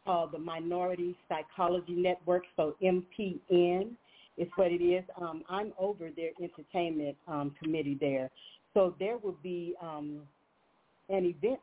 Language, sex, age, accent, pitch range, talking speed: English, female, 40-59, American, 160-185 Hz, 135 wpm